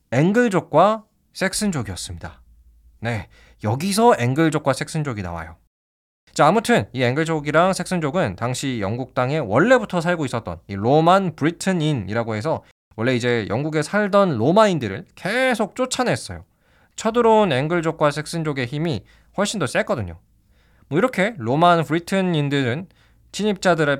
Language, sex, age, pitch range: Korean, male, 20-39, 110-180 Hz